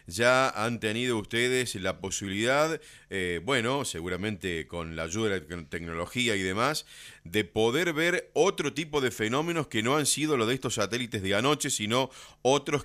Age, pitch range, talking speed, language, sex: 40-59, 95-125 Hz, 170 wpm, Spanish, male